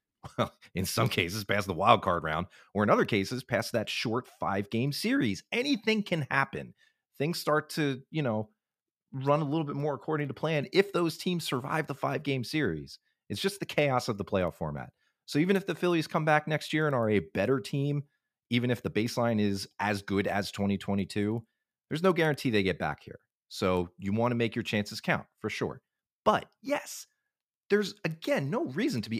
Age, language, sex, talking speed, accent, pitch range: 30-49, English, male, 205 wpm, American, 100-150 Hz